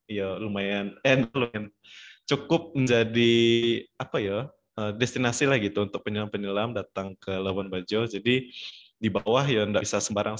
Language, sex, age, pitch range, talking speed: Indonesian, male, 20-39, 95-115 Hz, 145 wpm